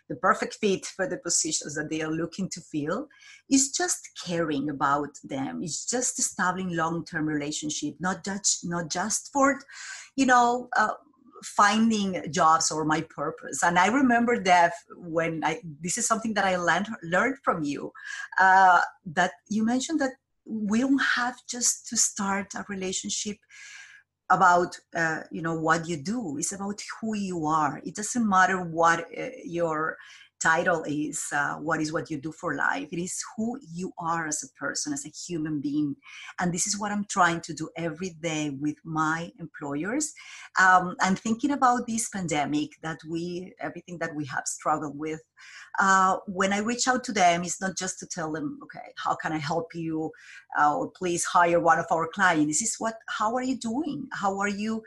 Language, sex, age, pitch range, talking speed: English, female, 30-49, 160-230 Hz, 185 wpm